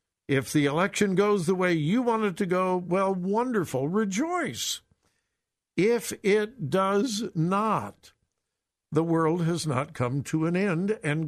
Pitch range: 120-185 Hz